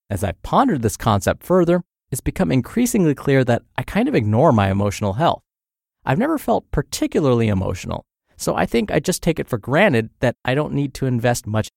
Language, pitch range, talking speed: English, 110-155 Hz, 200 wpm